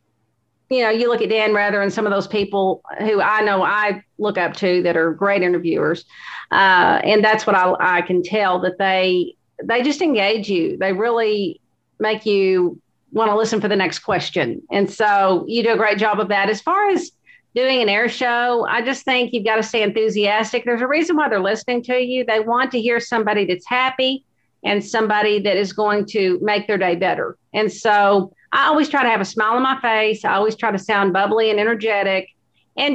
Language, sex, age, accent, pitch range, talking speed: English, female, 50-69, American, 195-225 Hz, 215 wpm